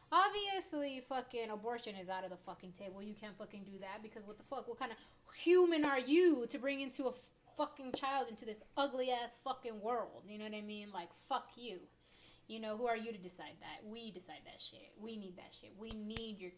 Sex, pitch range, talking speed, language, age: female, 220-285 Hz, 230 wpm, English, 20-39